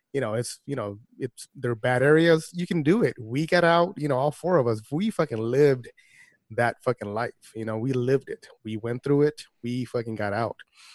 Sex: male